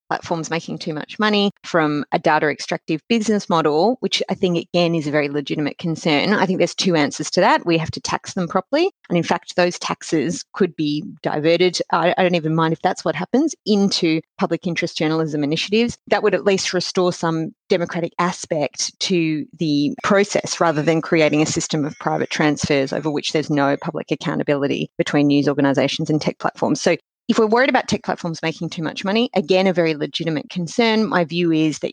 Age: 30-49